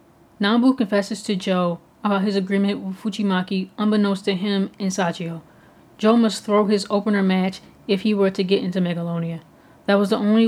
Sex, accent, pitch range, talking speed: female, American, 185-205 Hz, 180 wpm